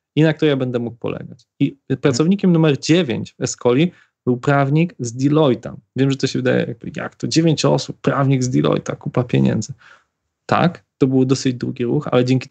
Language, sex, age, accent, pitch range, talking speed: Polish, male, 20-39, native, 120-140 Hz, 185 wpm